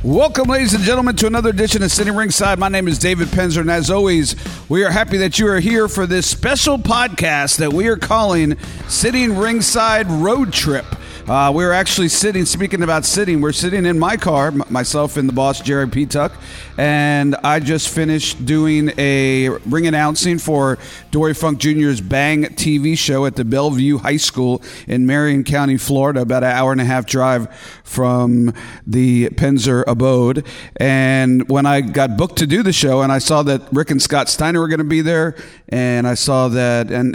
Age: 40-59